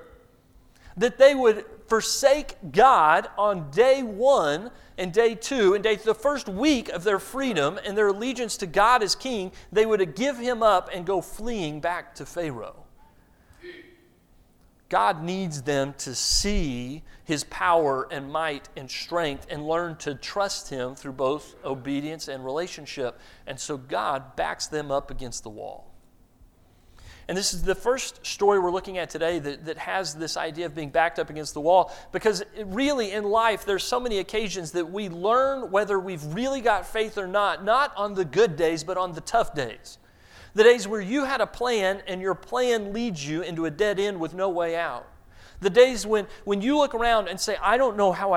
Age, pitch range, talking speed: 40-59, 160-225 Hz, 185 wpm